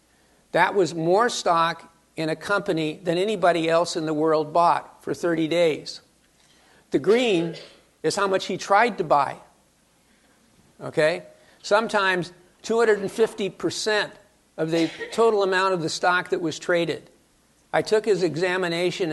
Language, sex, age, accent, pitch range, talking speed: English, male, 50-69, American, 165-200 Hz, 135 wpm